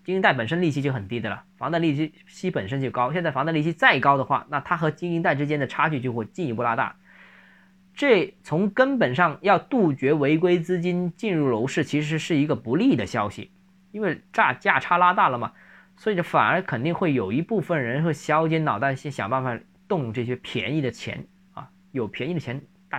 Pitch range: 125-180 Hz